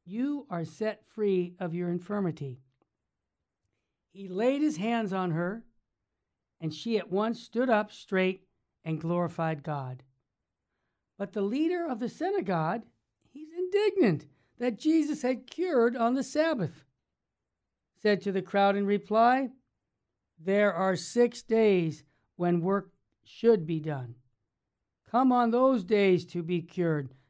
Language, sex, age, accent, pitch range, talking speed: English, male, 60-79, American, 175-235 Hz, 130 wpm